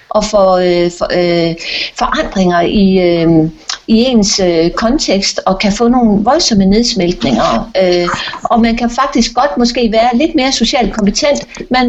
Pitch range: 190-245 Hz